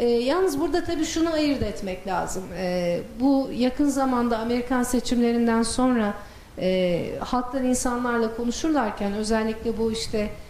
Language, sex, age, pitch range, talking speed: Turkish, female, 40-59, 215-275 Hz, 125 wpm